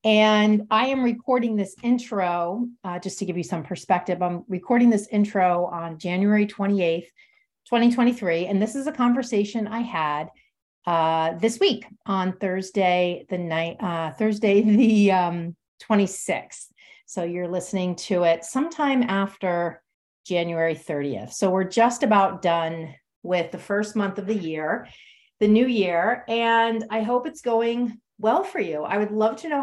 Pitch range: 170-220 Hz